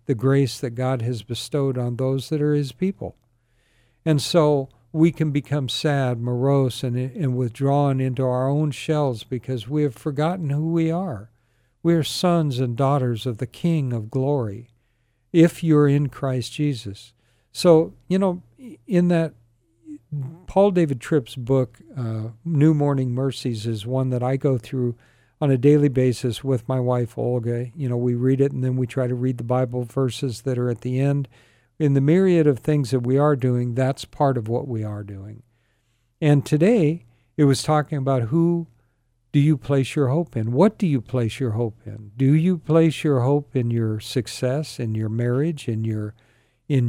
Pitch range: 120-150 Hz